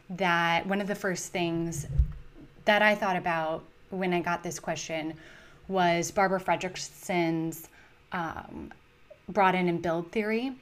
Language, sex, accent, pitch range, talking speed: English, female, American, 165-185 Hz, 130 wpm